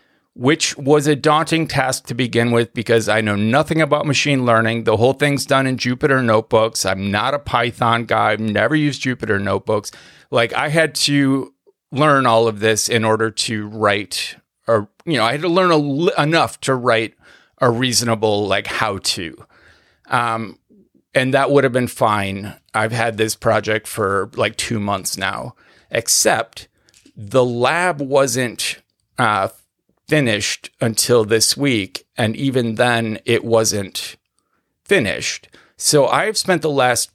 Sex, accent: male, American